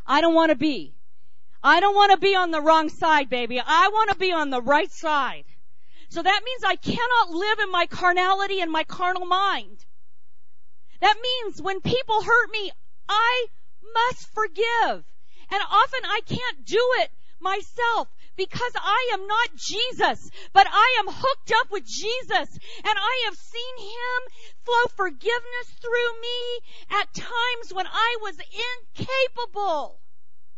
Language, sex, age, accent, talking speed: English, female, 40-59, American, 155 wpm